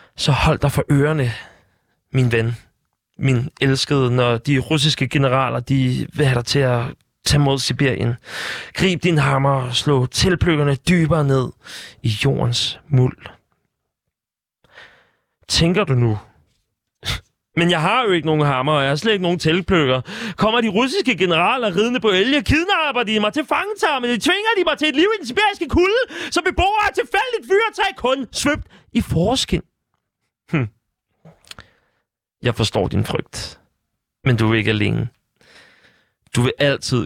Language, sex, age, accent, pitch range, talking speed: Danish, male, 30-49, native, 125-185 Hz, 150 wpm